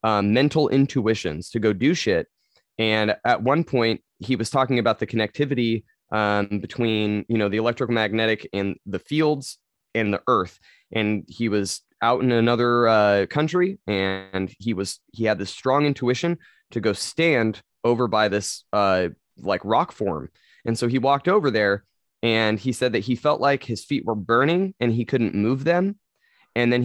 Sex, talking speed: male, 175 wpm